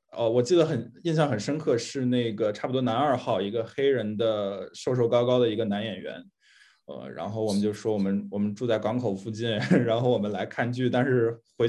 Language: Chinese